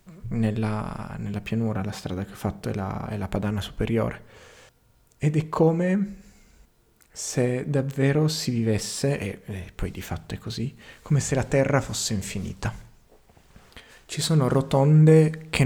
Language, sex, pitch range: Italian, male, 115-145 Hz